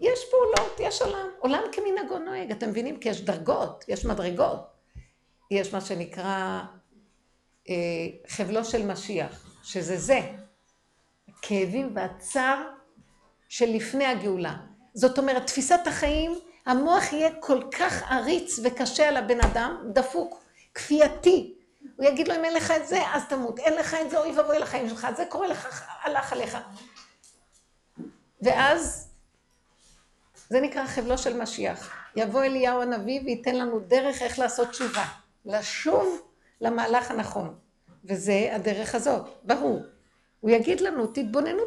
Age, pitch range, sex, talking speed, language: 50-69, 225-300 Hz, female, 130 wpm, Hebrew